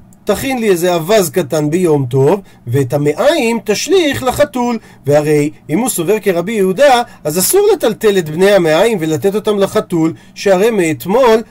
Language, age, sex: Hebrew, 40-59, male